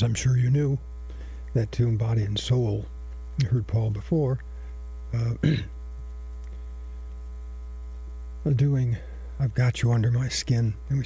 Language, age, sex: English, 60-79, male